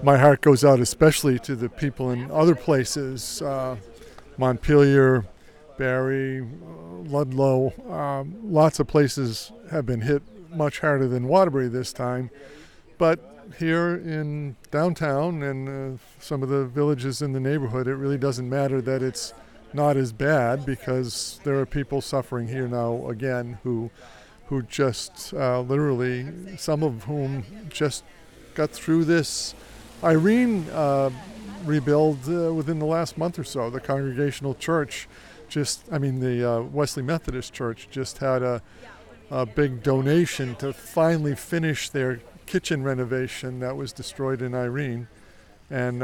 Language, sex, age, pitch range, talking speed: English, male, 50-69, 125-150 Hz, 145 wpm